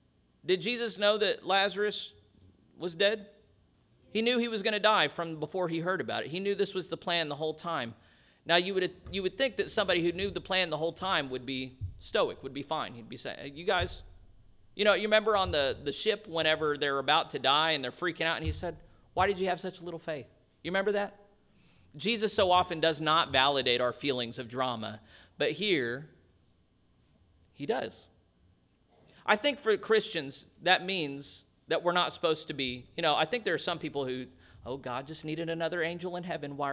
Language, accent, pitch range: English, American, 130-195 Hz